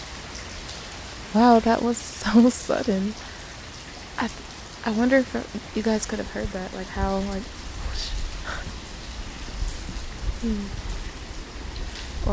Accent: American